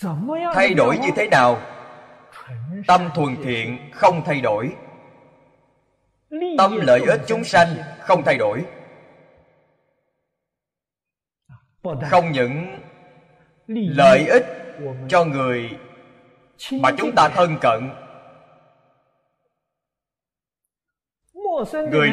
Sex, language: male, Vietnamese